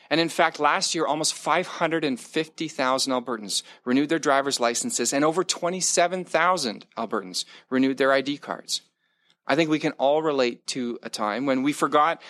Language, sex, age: English, male, 40-59